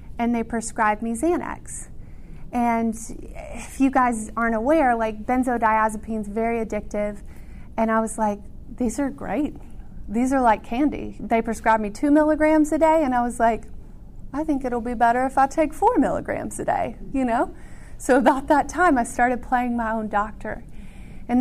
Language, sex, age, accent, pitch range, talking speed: English, female, 30-49, American, 220-255 Hz, 175 wpm